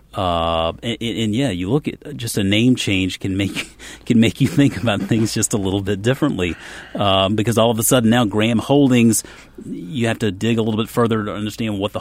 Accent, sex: American, male